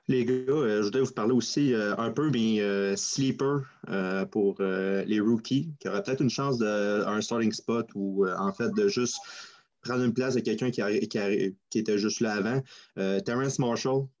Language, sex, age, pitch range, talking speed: French, male, 20-39, 100-120 Hz, 215 wpm